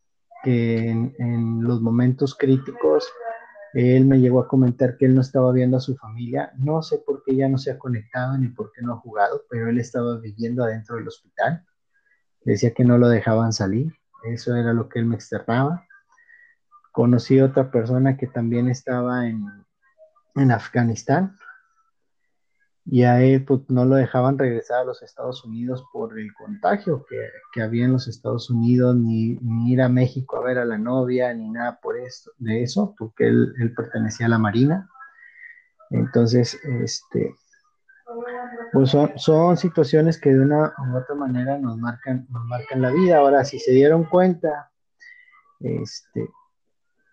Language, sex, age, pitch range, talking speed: Spanish, male, 30-49, 120-165 Hz, 170 wpm